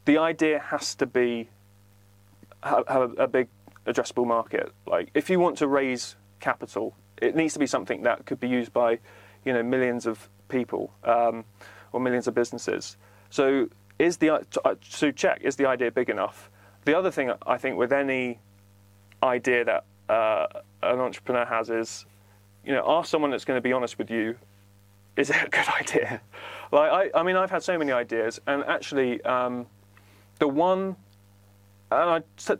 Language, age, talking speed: English, 30-49, 175 wpm